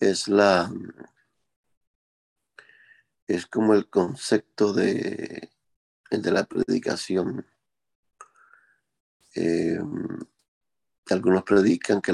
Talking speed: 70 wpm